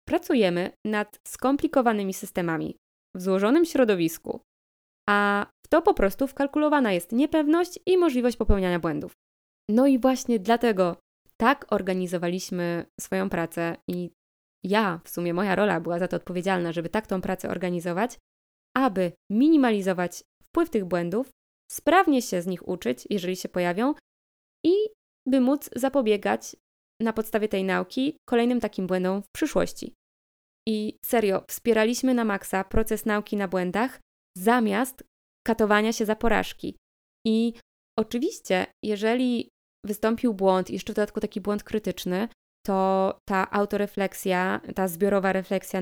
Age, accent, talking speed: 20-39, native, 130 wpm